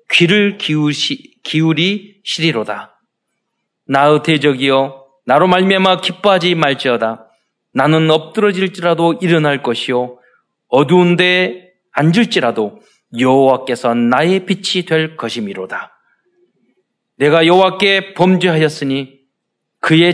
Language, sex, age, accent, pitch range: Korean, male, 40-59, native, 145-215 Hz